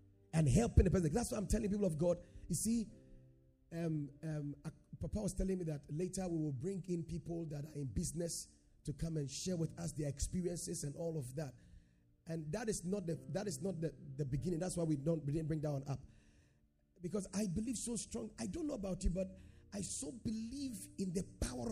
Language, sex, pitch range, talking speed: English, male, 130-195 Hz, 225 wpm